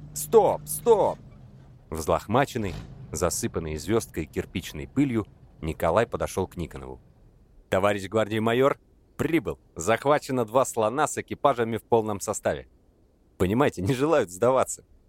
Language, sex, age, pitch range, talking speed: English, male, 30-49, 85-110 Hz, 105 wpm